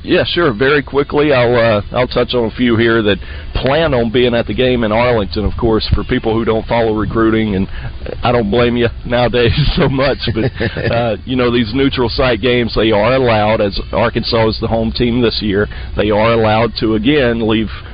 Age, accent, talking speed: 40-59, American, 205 wpm